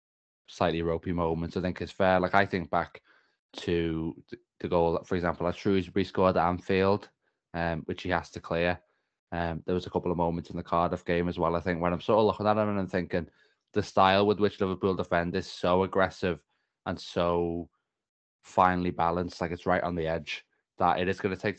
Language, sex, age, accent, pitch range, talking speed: English, male, 20-39, British, 80-90 Hz, 210 wpm